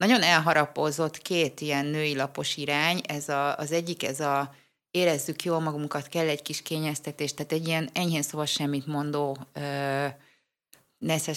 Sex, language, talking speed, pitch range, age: female, Hungarian, 145 wpm, 145-175 Hz, 30-49